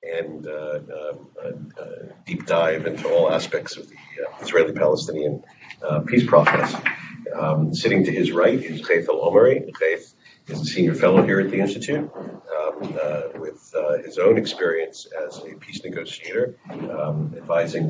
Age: 50-69